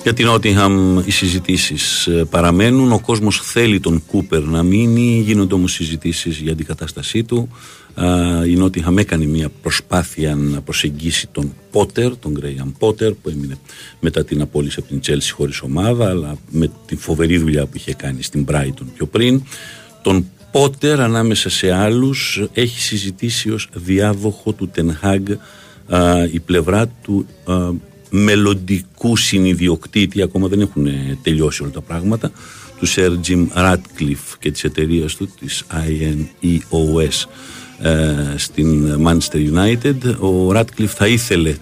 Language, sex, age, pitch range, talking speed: Greek, male, 50-69, 80-100 Hz, 135 wpm